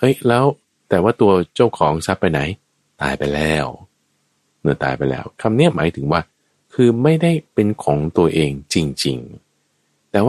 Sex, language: male, Thai